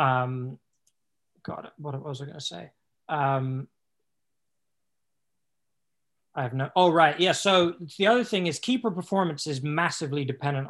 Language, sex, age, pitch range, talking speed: English, male, 20-39, 135-155 Hz, 140 wpm